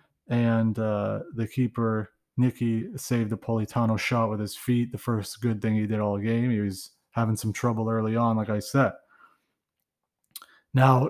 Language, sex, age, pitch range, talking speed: English, male, 30-49, 120-145 Hz, 175 wpm